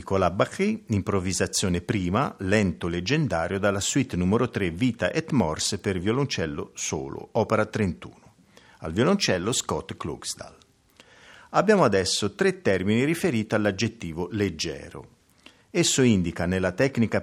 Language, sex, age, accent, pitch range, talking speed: Italian, male, 50-69, native, 95-135 Hz, 115 wpm